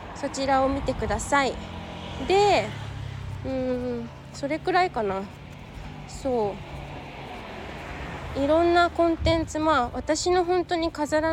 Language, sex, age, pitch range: Japanese, female, 20-39, 210-325 Hz